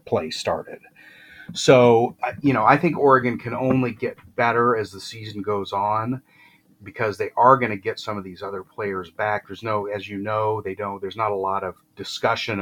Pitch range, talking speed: 95-120 Hz, 200 wpm